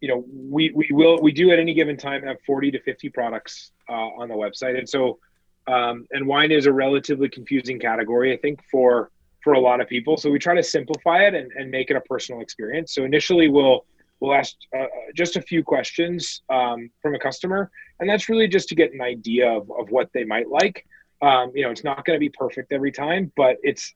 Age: 30-49